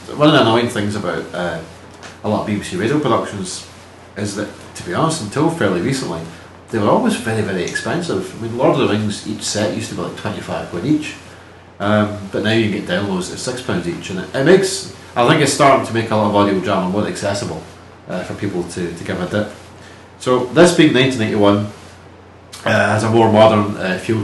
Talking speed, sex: 215 wpm, male